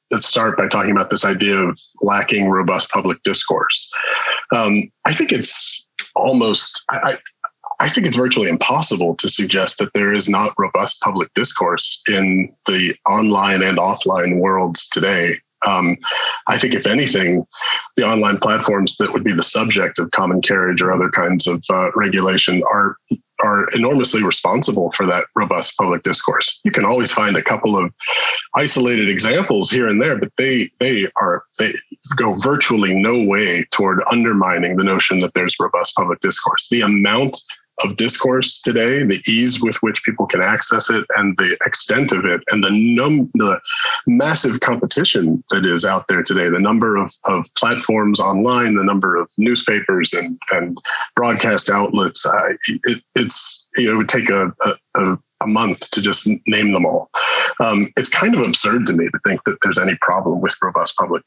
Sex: male